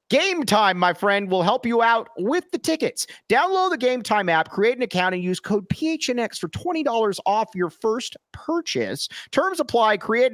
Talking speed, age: 185 wpm, 40-59